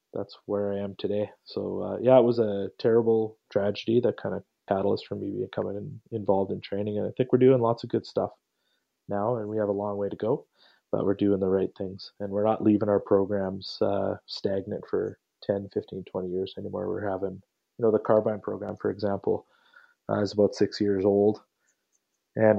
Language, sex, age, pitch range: English, male, 30-49, 100-105 Hz